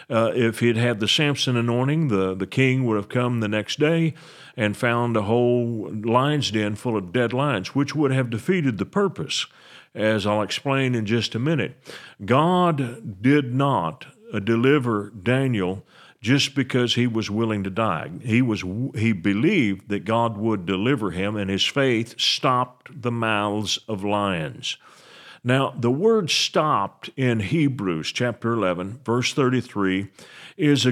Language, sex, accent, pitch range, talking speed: English, male, American, 110-140 Hz, 150 wpm